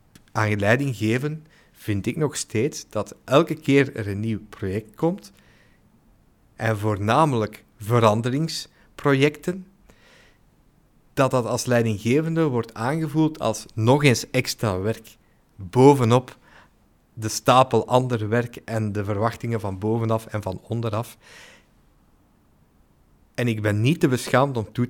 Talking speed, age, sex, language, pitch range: 120 wpm, 50-69, male, Dutch, 105-130 Hz